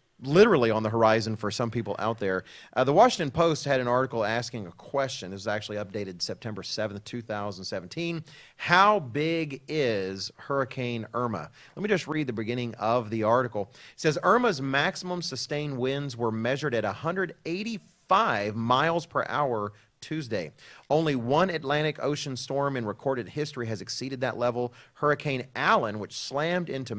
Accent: American